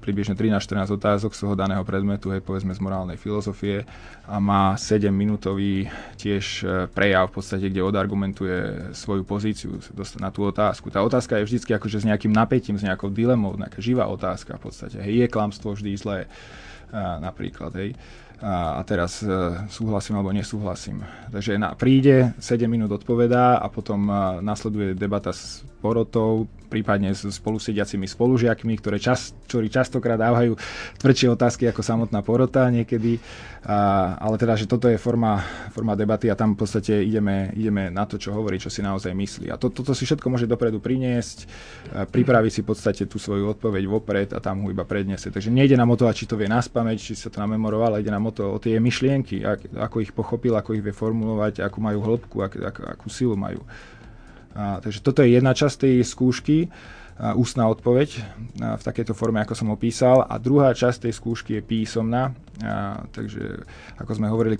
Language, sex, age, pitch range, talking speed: Slovak, male, 20-39, 100-115 Hz, 175 wpm